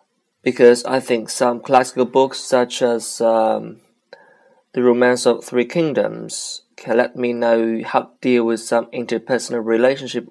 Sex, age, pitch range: male, 20-39, 115-125 Hz